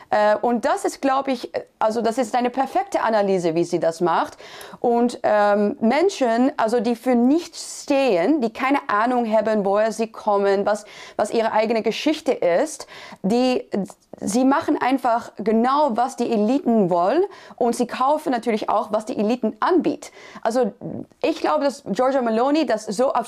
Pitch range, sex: 205-255 Hz, female